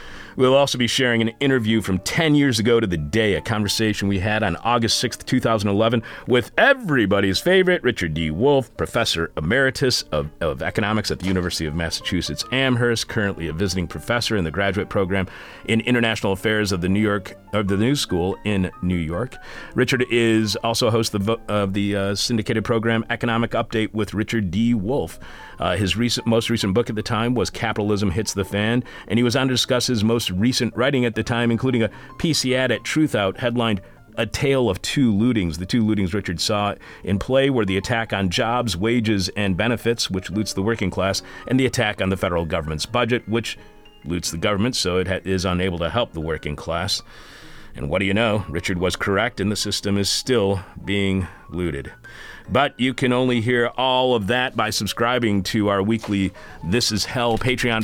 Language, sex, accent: English, male, American